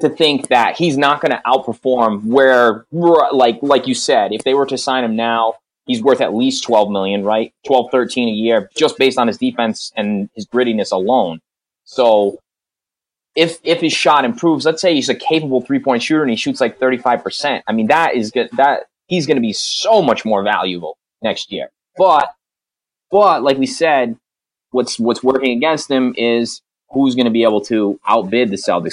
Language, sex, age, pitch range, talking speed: English, male, 20-39, 115-145 Hz, 200 wpm